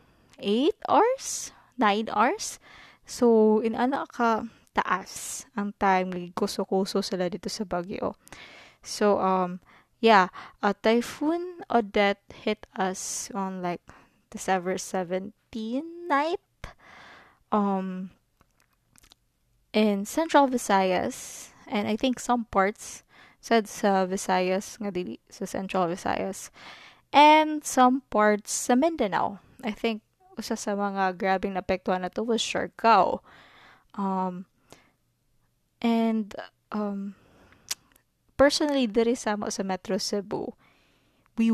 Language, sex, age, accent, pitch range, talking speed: Filipino, female, 20-39, native, 195-245 Hz, 105 wpm